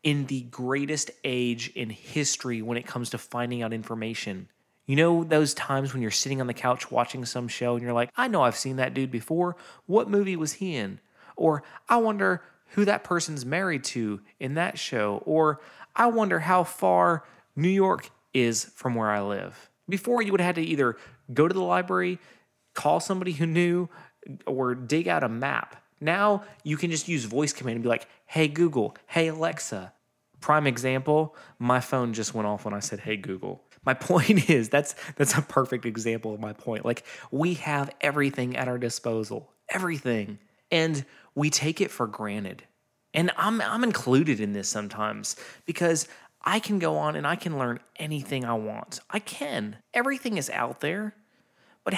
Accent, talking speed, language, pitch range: American, 185 wpm, English, 120-170 Hz